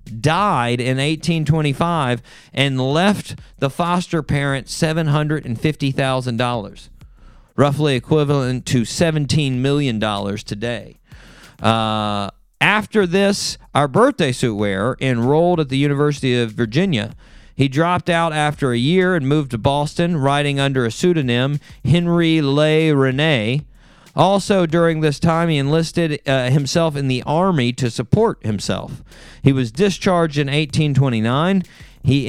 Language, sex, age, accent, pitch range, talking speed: English, male, 40-59, American, 125-165 Hz, 120 wpm